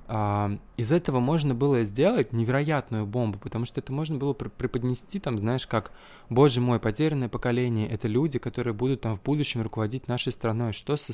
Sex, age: male, 20-39